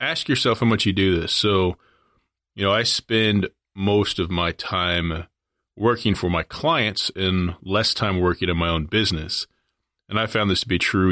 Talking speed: 190 wpm